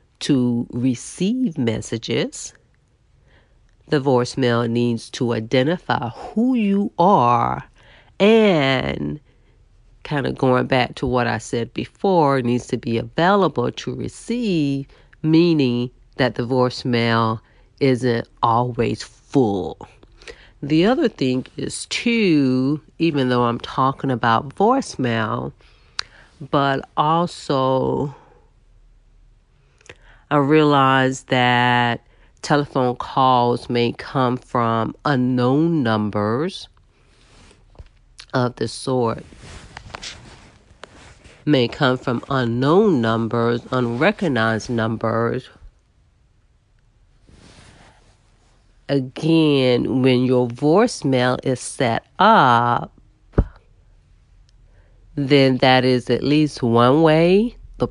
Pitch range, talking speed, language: 115-140 Hz, 85 wpm, English